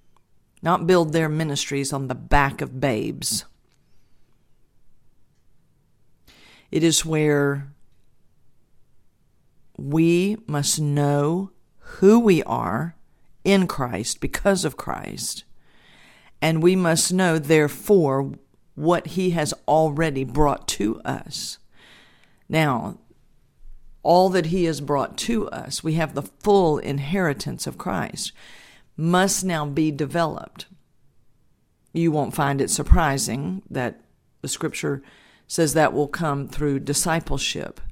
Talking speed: 110 wpm